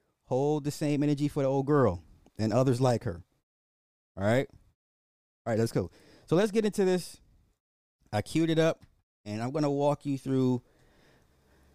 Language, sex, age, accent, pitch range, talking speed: English, male, 30-49, American, 105-135 Hz, 170 wpm